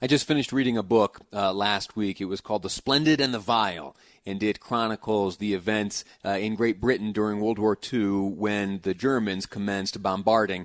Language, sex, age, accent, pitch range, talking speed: English, male, 30-49, American, 105-130 Hz, 195 wpm